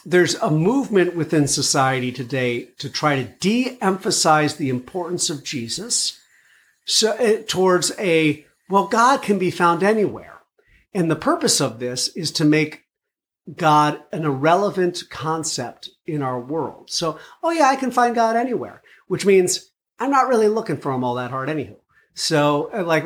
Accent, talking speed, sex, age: American, 155 wpm, male, 50-69